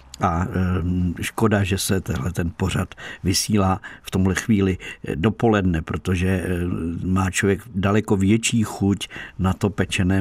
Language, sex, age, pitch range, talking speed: Czech, male, 50-69, 90-110 Hz, 125 wpm